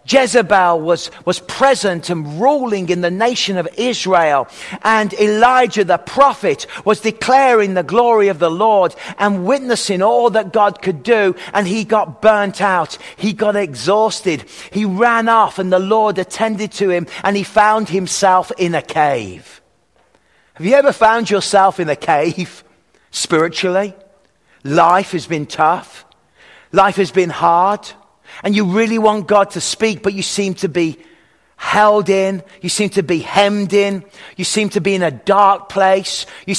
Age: 40-59